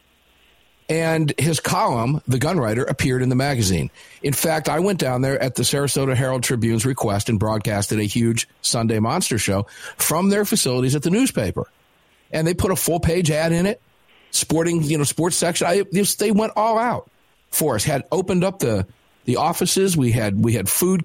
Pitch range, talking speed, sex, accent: 125-170 Hz, 190 wpm, male, American